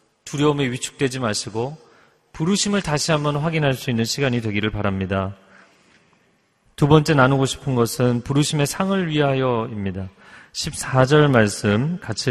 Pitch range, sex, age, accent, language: 110-165 Hz, male, 40-59, native, Korean